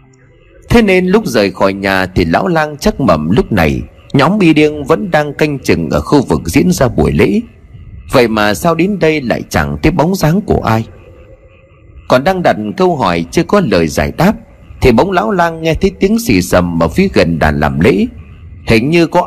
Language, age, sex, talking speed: Vietnamese, 30-49, male, 210 wpm